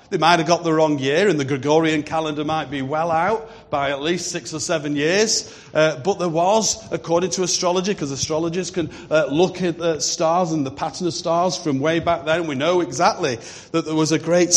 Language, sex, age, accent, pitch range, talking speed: English, male, 40-59, British, 145-175 Hz, 225 wpm